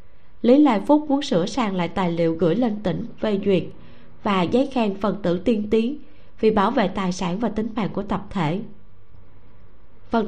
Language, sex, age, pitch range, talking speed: Vietnamese, female, 20-39, 175-235 Hz, 195 wpm